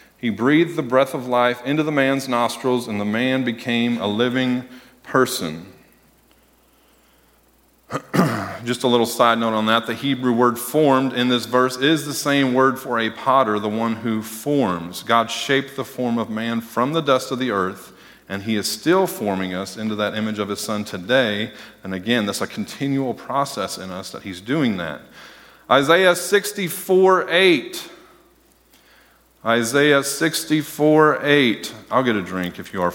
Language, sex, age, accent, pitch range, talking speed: English, male, 40-59, American, 105-135 Hz, 170 wpm